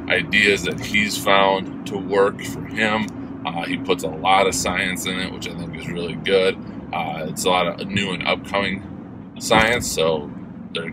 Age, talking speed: 20-39, 185 wpm